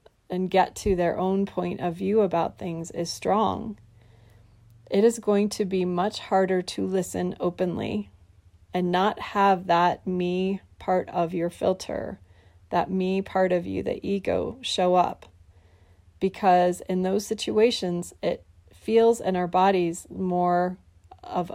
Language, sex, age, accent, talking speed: English, female, 30-49, American, 140 wpm